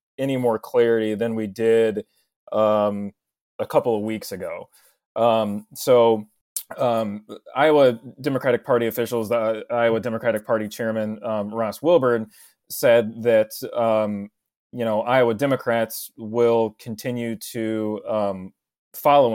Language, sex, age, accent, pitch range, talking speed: English, male, 30-49, American, 110-125 Hz, 120 wpm